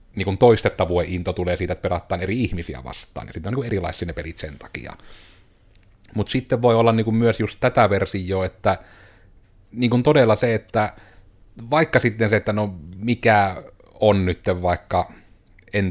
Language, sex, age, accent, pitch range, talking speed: Finnish, male, 30-49, native, 90-115 Hz, 170 wpm